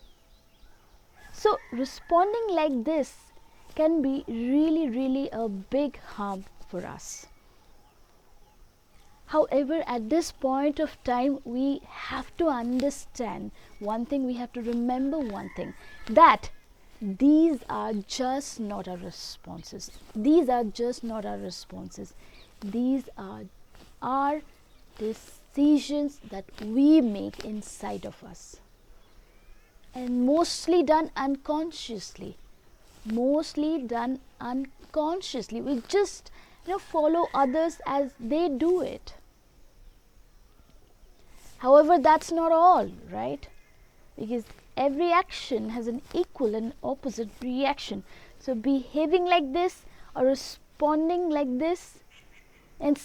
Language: English